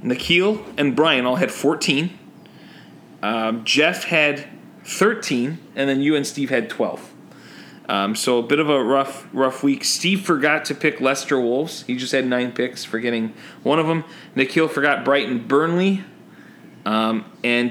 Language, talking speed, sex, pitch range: English, 165 wpm, male, 130-165 Hz